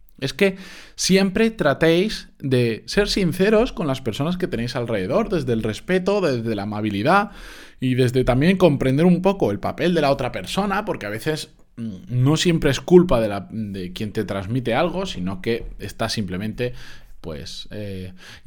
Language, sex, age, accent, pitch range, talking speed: Spanish, male, 20-39, Spanish, 115-160 Hz, 160 wpm